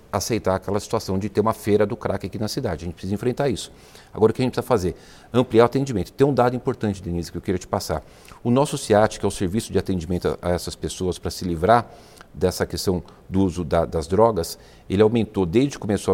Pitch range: 95-120 Hz